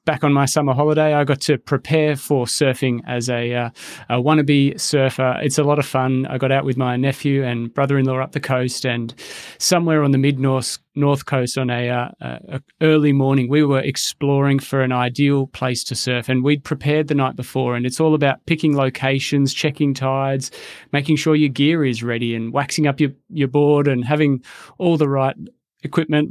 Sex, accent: male, Australian